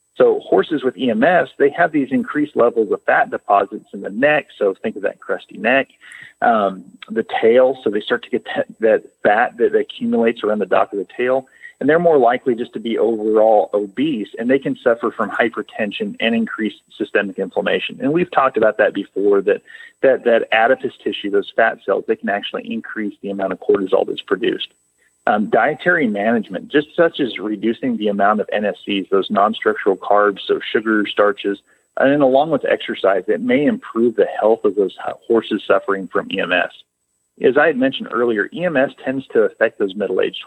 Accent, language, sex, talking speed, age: American, English, male, 185 wpm, 40-59